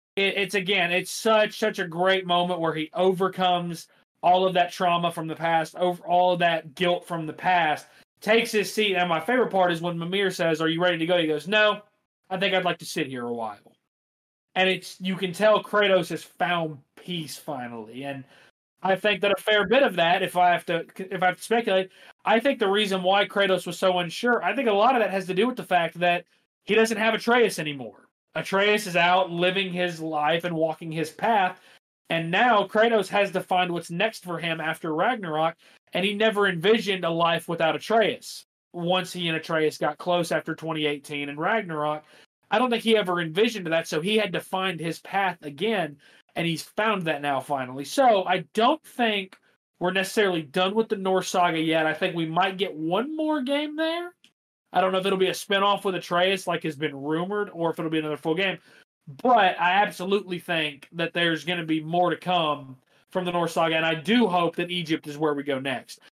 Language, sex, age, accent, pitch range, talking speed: English, male, 30-49, American, 165-200 Hz, 215 wpm